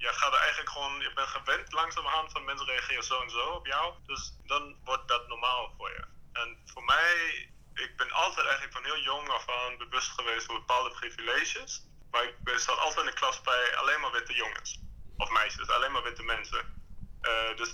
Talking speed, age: 205 wpm, 30-49